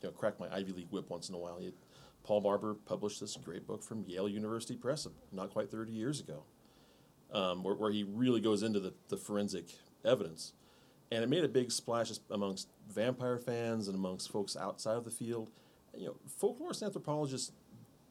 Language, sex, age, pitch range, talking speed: English, male, 30-49, 90-110 Hz, 195 wpm